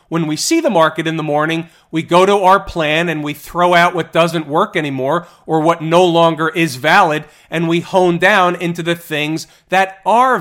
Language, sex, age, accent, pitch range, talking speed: English, male, 40-59, American, 160-200 Hz, 210 wpm